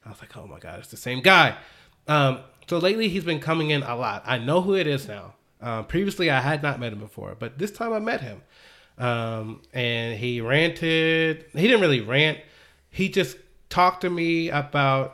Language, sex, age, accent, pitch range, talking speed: English, male, 30-49, American, 125-170 Hz, 210 wpm